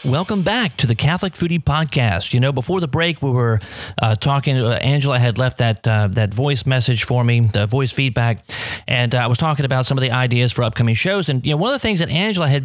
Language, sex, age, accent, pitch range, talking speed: English, male, 30-49, American, 115-150 Hz, 250 wpm